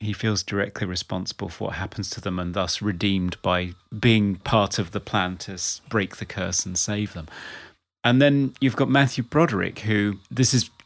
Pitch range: 100-125 Hz